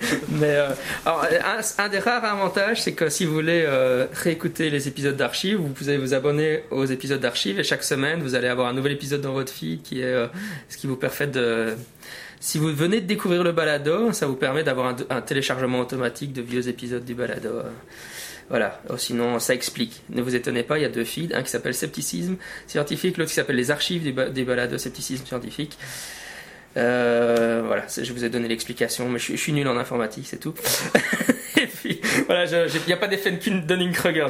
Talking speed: 215 wpm